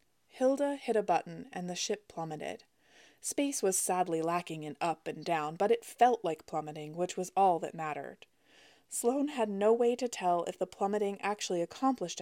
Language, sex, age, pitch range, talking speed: English, female, 20-39, 170-225 Hz, 180 wpm